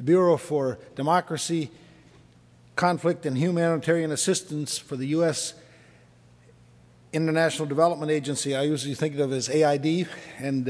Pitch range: 140-170 Hz